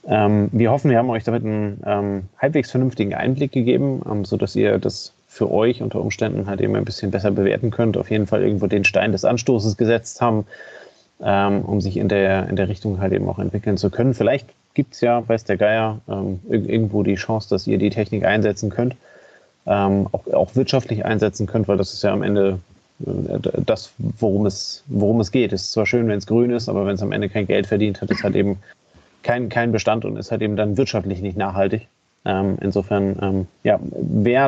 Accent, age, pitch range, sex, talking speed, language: German, 30-49, 100-115 Hz, male, 220 wpm, German